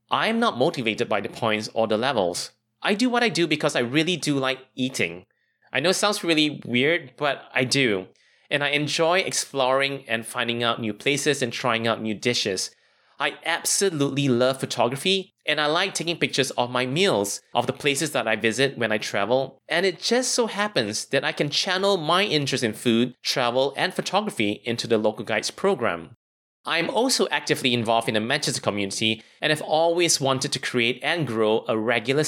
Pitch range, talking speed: 115-165 Hz, 190 wpm